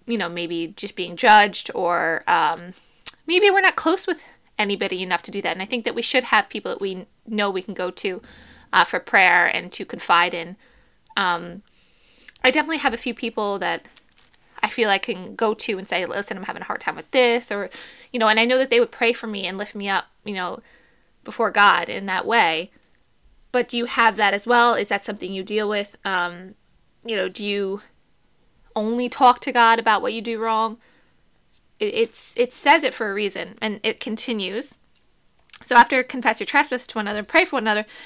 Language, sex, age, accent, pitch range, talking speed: English, female, 20-39, American, 205-260 Hz, 215 wpm